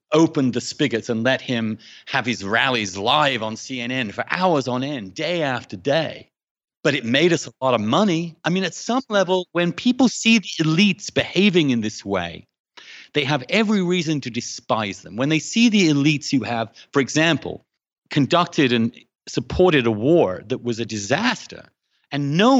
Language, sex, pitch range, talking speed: English, male, 125-180 Hz, 180 wpm